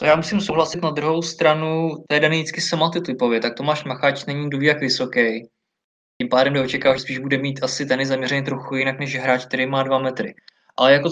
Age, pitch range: 20-39, 130-155 Hz